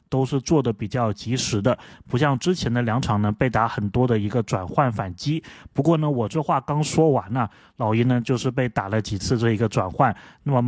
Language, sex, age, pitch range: Chinese, male, 20-39, 115-145 Hz